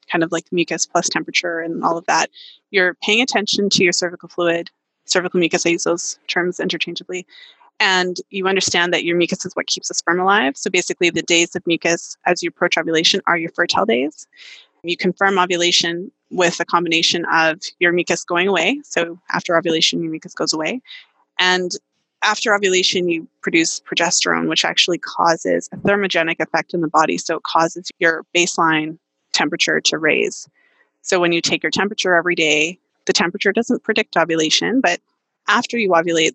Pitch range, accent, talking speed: 170-190 Hz, American, 180 wpm